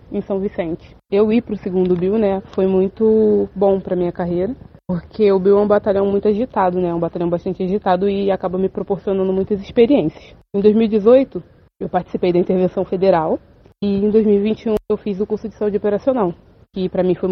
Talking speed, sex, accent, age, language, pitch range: 195 wpm, female, Brazilian, 20-39, Portuguese, 175-205 Hz